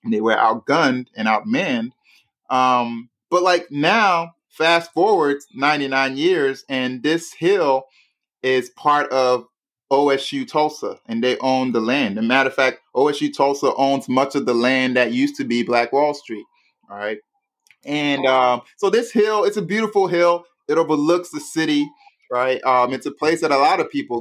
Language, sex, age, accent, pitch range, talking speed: English, male, 30-49, American, 125-160 Hz, 175 wpm